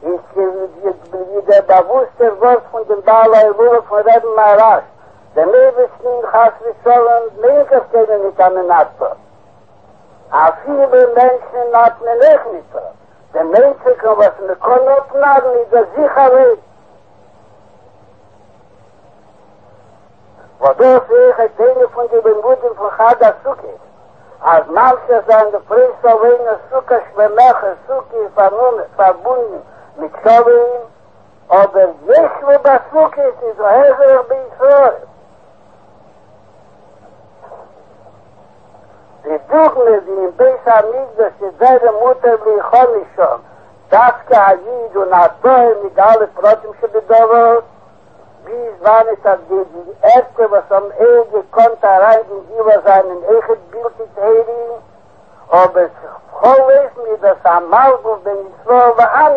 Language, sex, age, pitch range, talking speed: English, male, 60-79, 210-260 Hz, 30 wpm